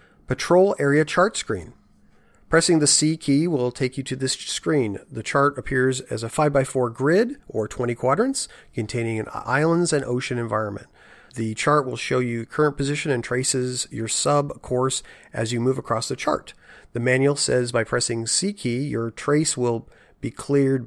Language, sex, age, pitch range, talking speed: English, male, 40-59, 115-145 Hz, 180 wpm